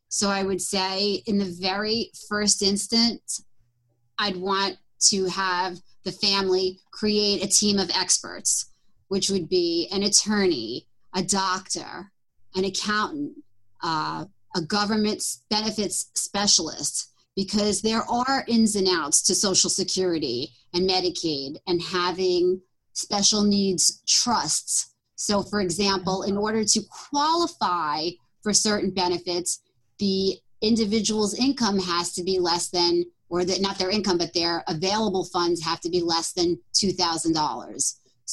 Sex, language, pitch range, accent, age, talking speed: female, English, 175-205 Hz, American, 30-49, 130 wpm